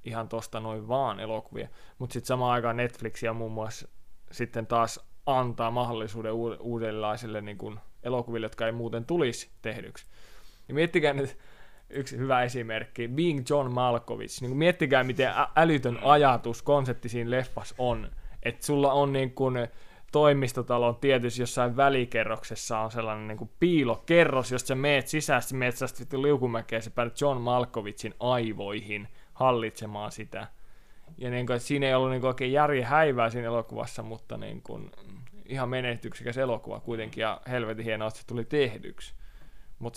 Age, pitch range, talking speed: 20-39, 115-135 Hz, 140 wpm